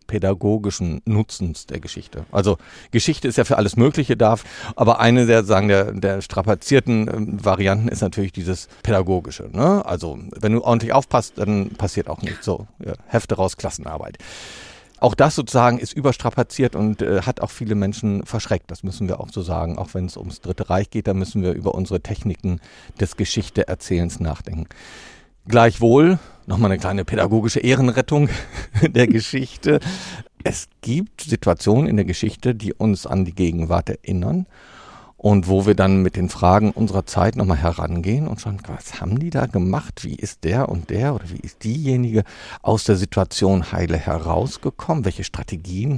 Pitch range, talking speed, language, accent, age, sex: 95-120 Hz, 165 wpm, German, German, 40-59, male